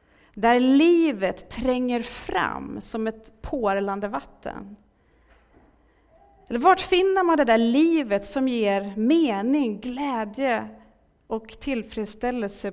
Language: Swedish